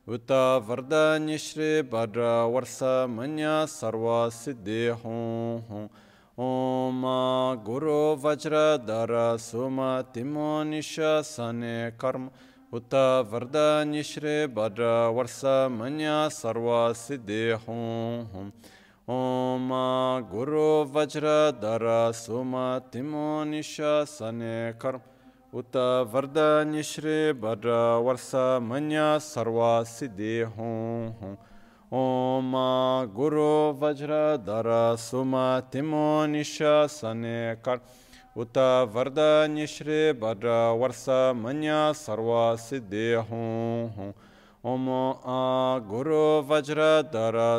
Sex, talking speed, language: male, 80 wpm, Italian